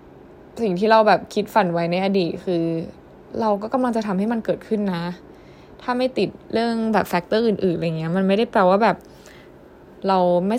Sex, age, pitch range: female, 10-29, 180-220 Hz